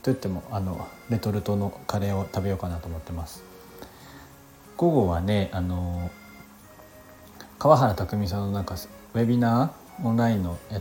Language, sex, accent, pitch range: Japanese, male, native, 95-125 Hz